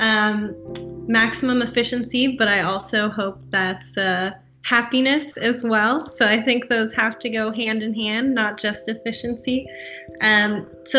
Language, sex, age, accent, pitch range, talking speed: English, female, 10-29, American, 185-240 Hz, 145 wpm